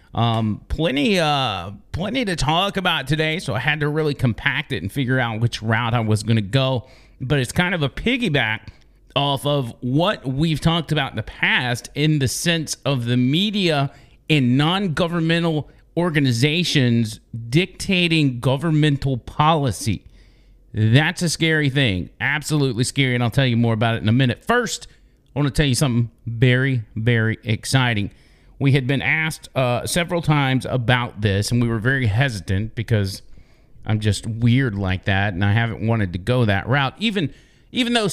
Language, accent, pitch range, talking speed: English, American, 115-155 Hz, 170 wpm